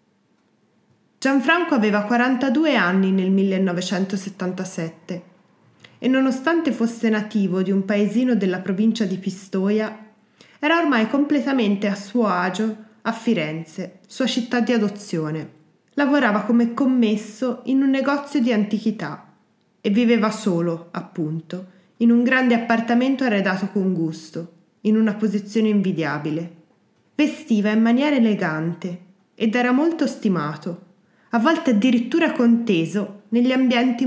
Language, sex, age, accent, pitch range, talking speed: Italian, female, 20-39, native, 185-240 Hz, 115 wpm